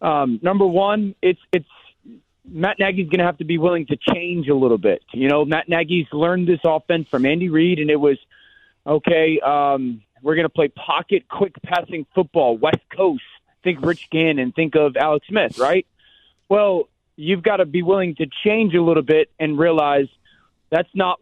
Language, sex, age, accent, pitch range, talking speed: English, male, 30-49, American, 145-185 Hz, 190 wpm